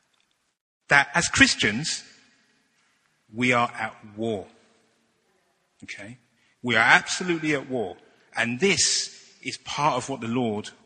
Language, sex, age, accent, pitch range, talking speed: English, male, 30-49, British, 110-160 Hz, 115 wpm